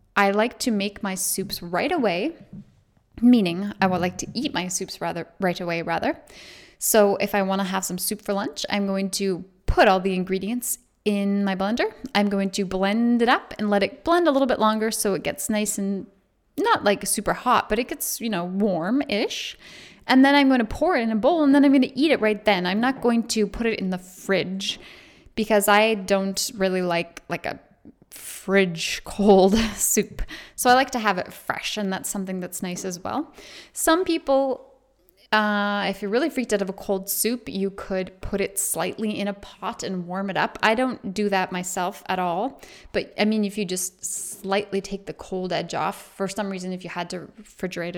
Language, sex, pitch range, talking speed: English, female, 190-230 Hz, 215 wpm